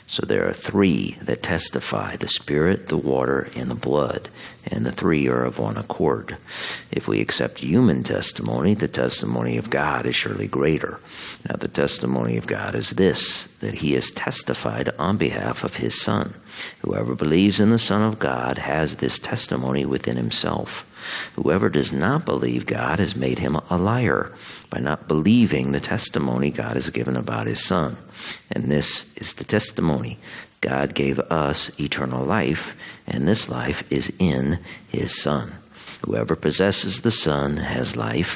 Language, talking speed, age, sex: English, 165 wpm, 50-69, male